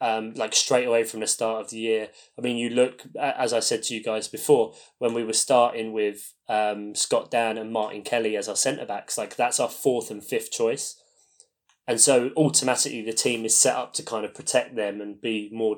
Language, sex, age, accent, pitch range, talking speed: English, male, 20-39, British, 110-130 Hz, 225 wpm